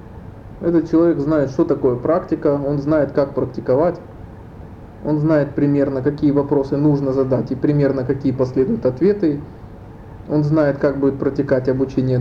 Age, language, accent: 20-39, Russian, native